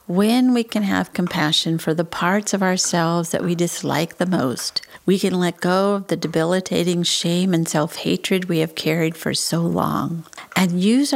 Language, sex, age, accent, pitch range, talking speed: English, female, 50-69, American, 165-190 Hz, 180 wpm